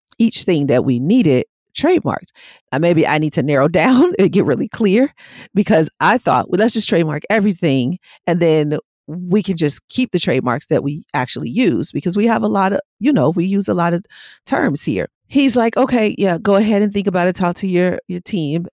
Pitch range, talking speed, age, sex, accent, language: 160-230 Hz, 215 wpm, 40-59, female, American, English